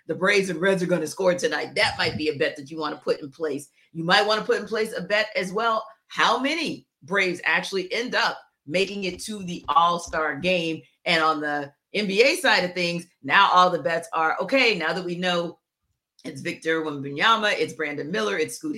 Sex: female